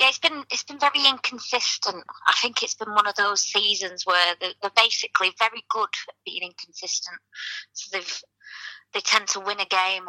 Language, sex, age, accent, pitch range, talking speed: English, female, 20-39, British, 165-195 Hz, 185 wpm